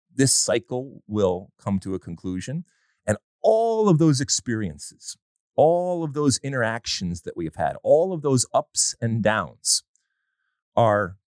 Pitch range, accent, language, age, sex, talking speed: 90-130 Hz, American, English, 30-49, male, 145 wpm